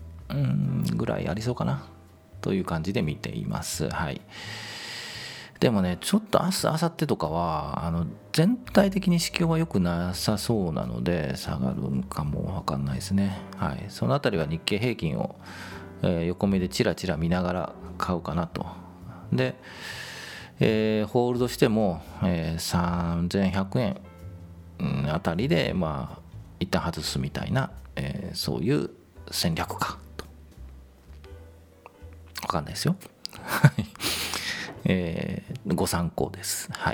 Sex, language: male, Japanese